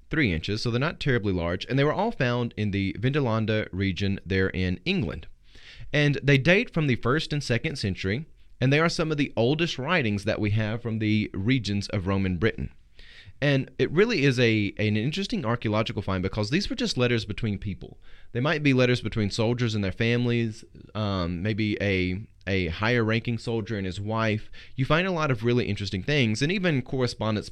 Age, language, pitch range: 30-49, English, 100-135 Hz